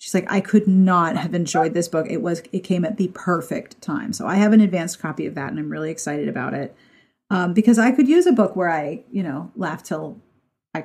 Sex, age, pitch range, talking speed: female, 40-59, 165-215 Hz, 250 wpm